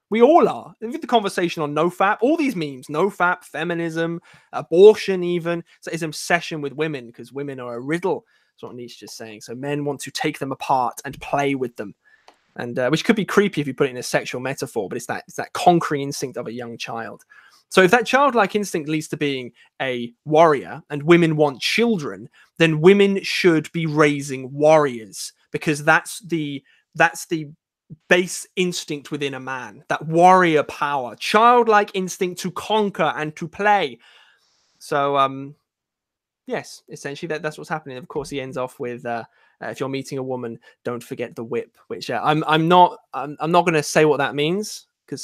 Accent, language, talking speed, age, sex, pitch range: British, English, 190 wpm, 20-39, male, 140-185 Hz